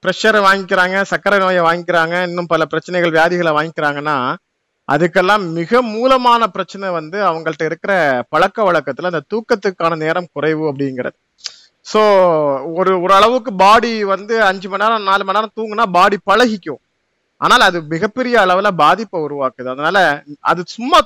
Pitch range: 160-215 Hz